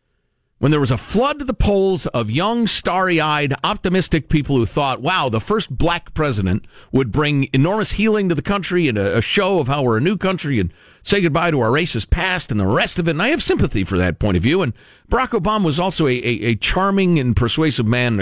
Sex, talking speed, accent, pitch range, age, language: male, 230 wpm, American, 100-170 Hz, 50-69, English